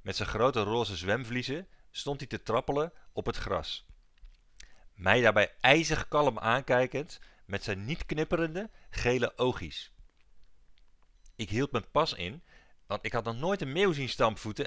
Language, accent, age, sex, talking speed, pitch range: Dutch, Dutch, 40-59, male, 150 wpm, 90-125 Hz